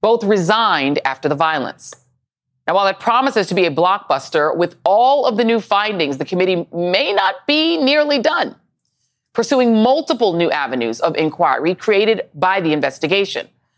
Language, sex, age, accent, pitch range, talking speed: English, female, 40-59, American, 165-235 Hz, 155 wpm